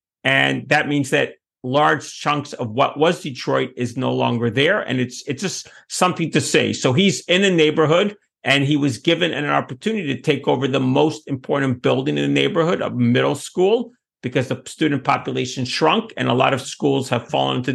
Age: 50-69